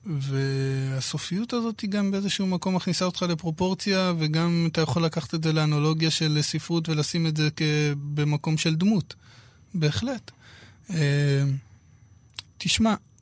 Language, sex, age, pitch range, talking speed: Hebrew, male, 20-39, 135-175 Hz, 120 wpm